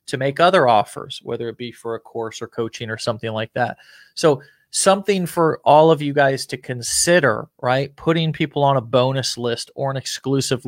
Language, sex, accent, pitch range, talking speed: English, male, American, 120-145 Hz, 195 wpm